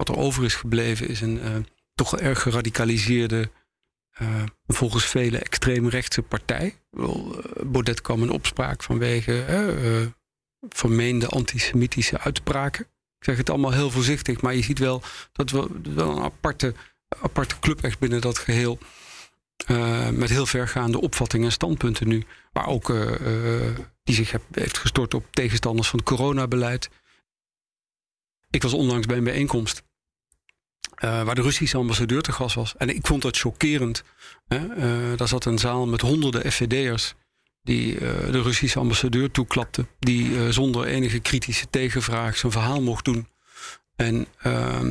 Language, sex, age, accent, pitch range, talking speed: Dutch, male, 40-59, Dutch, 115-130 Hz, 150 wpm